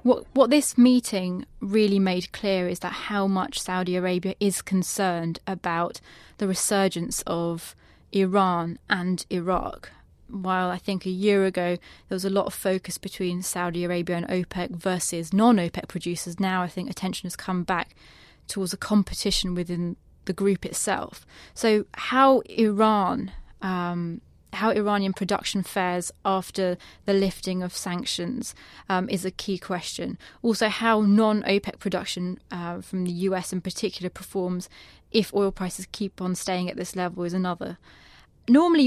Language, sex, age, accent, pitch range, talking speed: English, female, 20-39, British, 180-205 Hz, 150 wpm